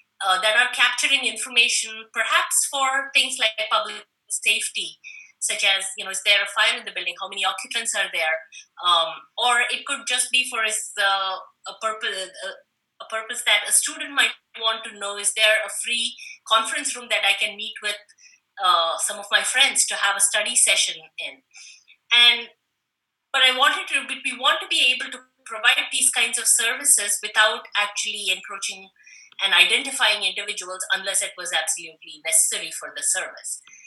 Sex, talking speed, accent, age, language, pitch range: female, 170 wpm, Indian, 20-39, English, 195-245 Hz